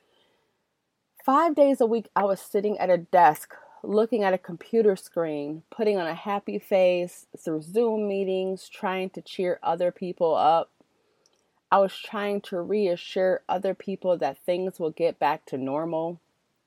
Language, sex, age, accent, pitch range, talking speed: English, female, 30-49, American, 165-205 Hz, 155 wpm